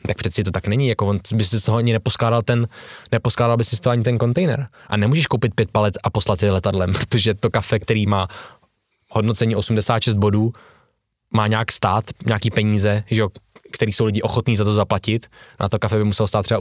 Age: 20-39